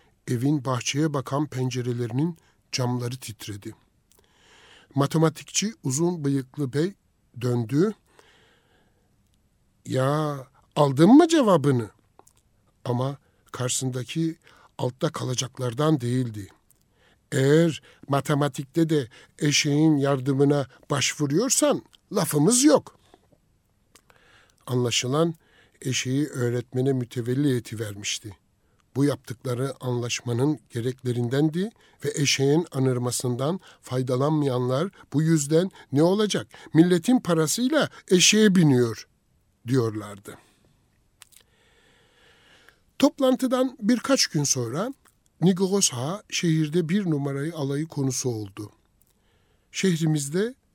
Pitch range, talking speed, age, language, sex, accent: 120-165 Hz, 75 wpm, 60-79, Turkish, male, native